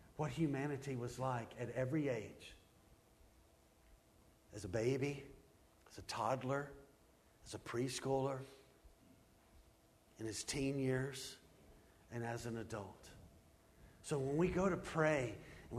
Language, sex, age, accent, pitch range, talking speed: English, male, 50-69, American, 110-160 Hz, 120 wpm